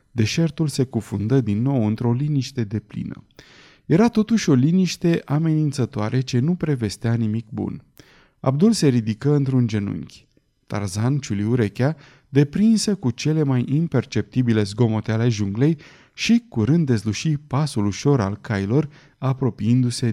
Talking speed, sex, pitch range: 130 wpm, male, 110-150 Hz